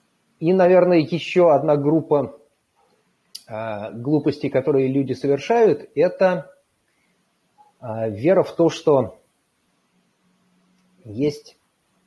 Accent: native